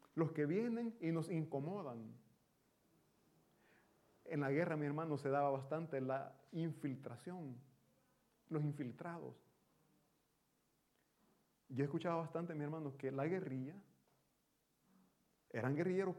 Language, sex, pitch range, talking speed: Italian, male, 135-185 Hz, 110 wpm